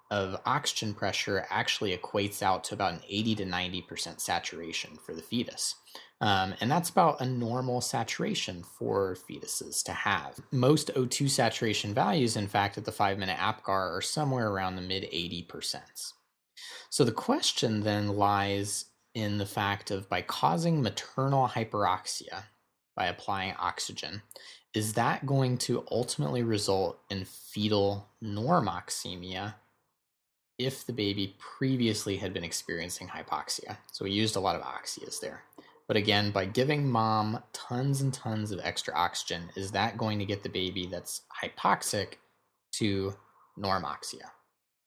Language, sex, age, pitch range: English, male, 20-39, 95-125 Hz